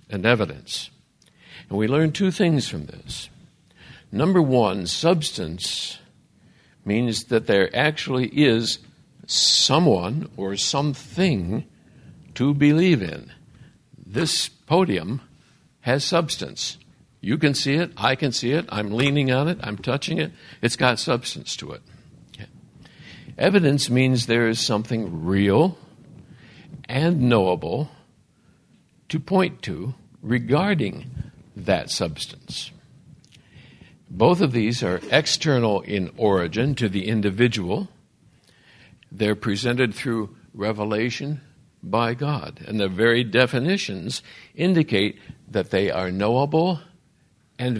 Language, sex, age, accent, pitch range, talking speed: English, male, 60-79, American, 105-150 Hz, 110 wpm